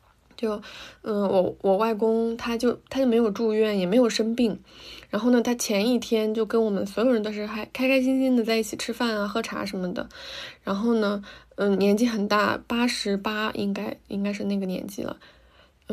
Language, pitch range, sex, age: Chinese, 205-245 Hz, female, 20-39